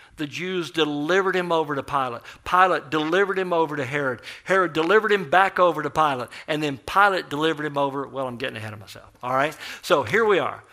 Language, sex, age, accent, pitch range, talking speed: English, male, 50-69, American, 130-170 Hz, 215 wpm